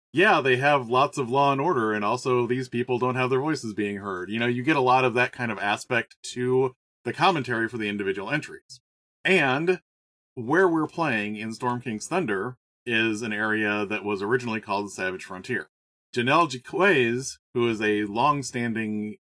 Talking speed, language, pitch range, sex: 185 wpm, English, 110-130 Hz, male